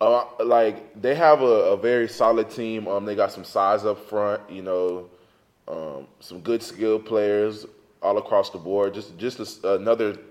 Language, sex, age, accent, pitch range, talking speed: English, male, 20-39, American, 90-110 Hz, 175 wpm